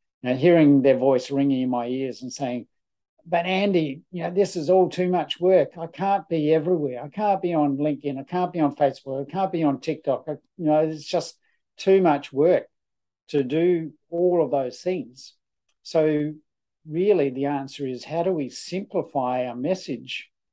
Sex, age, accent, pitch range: male, 50-69, Australian, 135-165 Hz